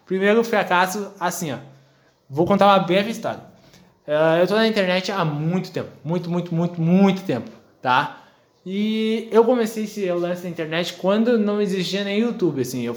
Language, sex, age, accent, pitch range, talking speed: Portuguese, male, 20-39, Brazilian, 155-195 Hz, 170 wpm